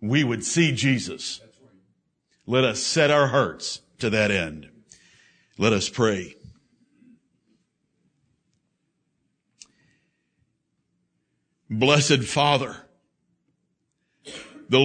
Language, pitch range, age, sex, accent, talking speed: English, 140-175 Hz, 60-79, male, American, 75 wpm